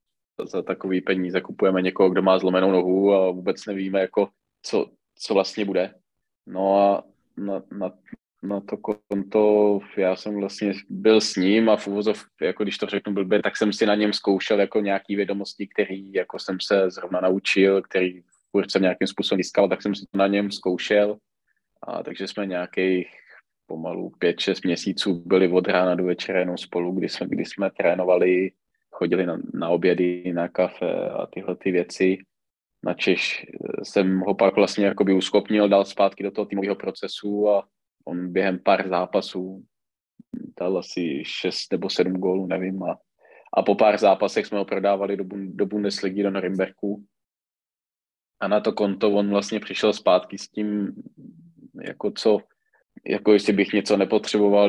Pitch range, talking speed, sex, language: 95-100 Hz, 165 wpm, male, Czech